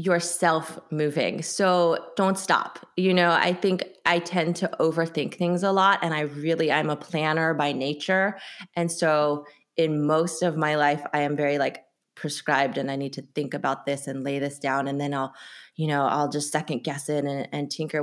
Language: English